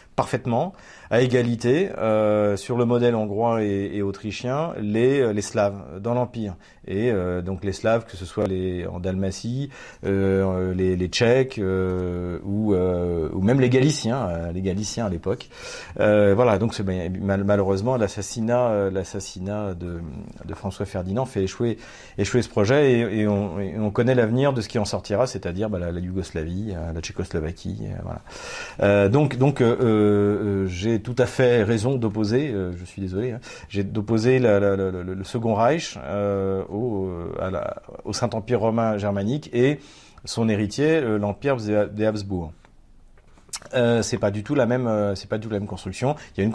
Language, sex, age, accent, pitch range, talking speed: French, male, 40-59, French, 95-115 Hz, 165 wpm